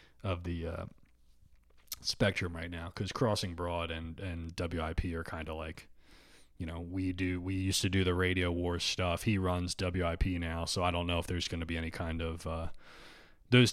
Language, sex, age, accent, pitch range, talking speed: English, male, 30-49, American, 85-105 Hz, 200 wpm